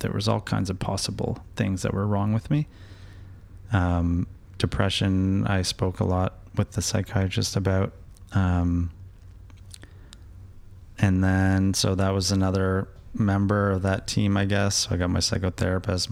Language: English